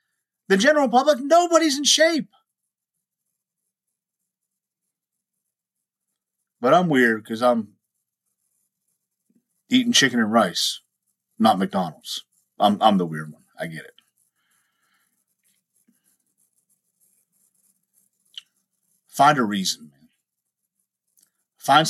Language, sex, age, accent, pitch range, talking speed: English, male, 50-69, American, 125-195 Hz, 80 wpm